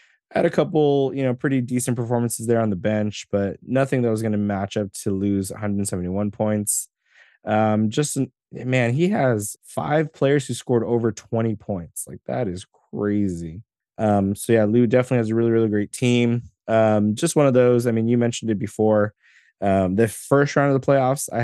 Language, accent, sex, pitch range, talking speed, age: English, American, male, 100-125 Hz, 195 wpm, 20-39